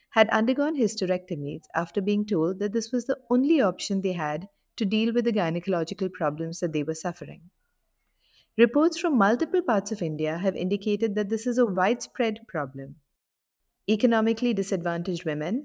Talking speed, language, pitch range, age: 155 wpm, English, 165-225 Hz, 50-69